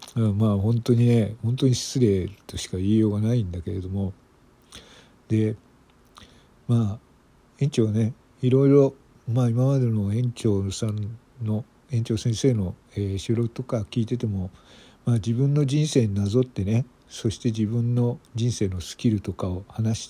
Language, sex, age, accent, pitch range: Japanese, male, 50-69, native, 105-125 Hz